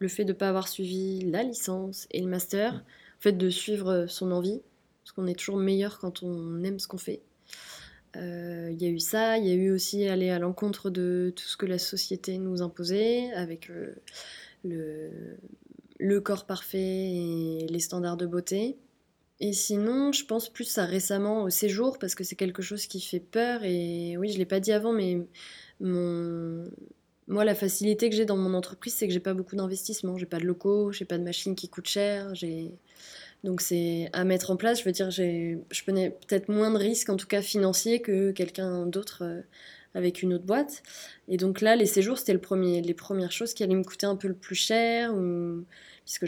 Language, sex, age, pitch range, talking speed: French, female, 20-39, 175-205 Hz, 220 wpm